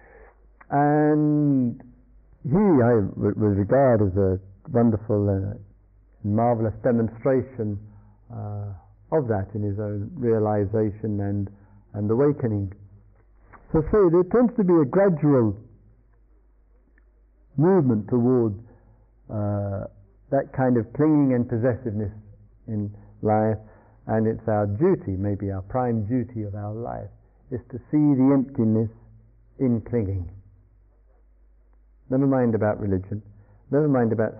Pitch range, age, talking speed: 105-125 Hz, 50-69, 115 wpm